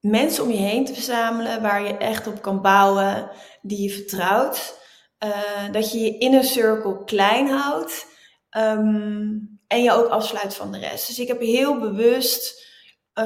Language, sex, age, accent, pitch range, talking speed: Dutch, female, 20-39, Dutch, 205-235 Hz, 160 wpm